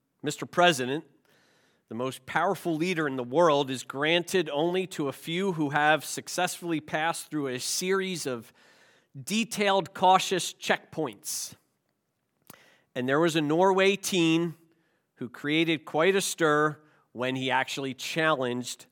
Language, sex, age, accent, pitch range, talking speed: English, male, 40-59, American, 140-185 Hz, 130 wpm